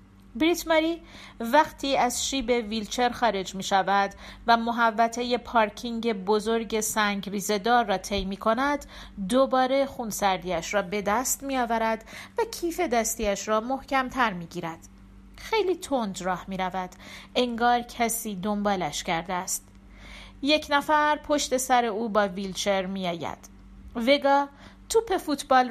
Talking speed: 125 wpm